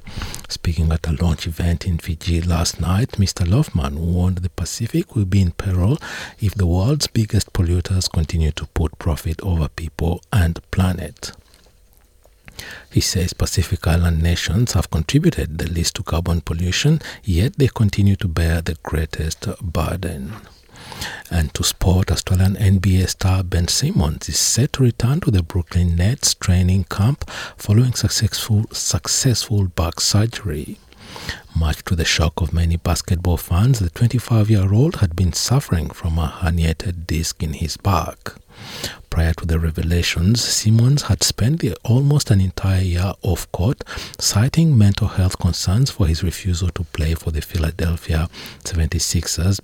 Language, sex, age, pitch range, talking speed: English, male, 60-79, 80-100 Hz, 145 wpm